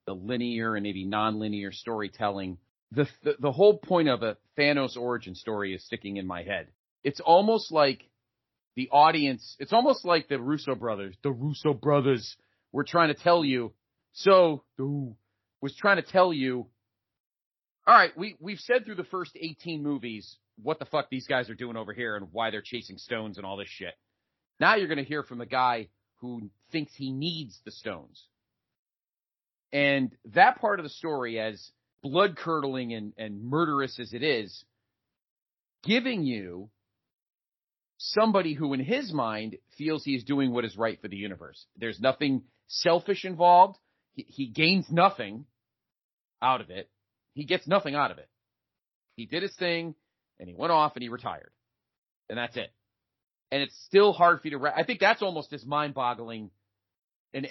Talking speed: 170 wpm